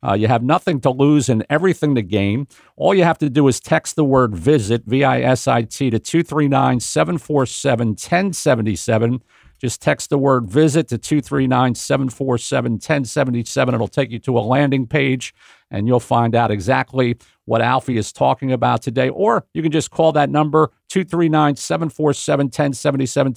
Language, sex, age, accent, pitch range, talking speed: English, male, 50-69, American, 125-150 Hz, 145 wpm